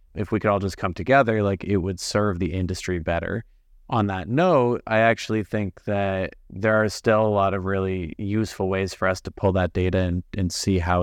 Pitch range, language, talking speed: 90-105 Hz, English, 220 wpm